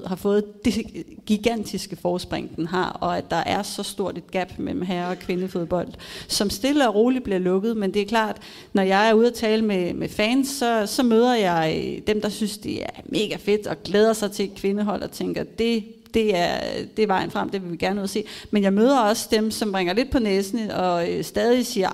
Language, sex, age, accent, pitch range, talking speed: Danish, female, 30-49, native, 180-215 Hz, 235 wpm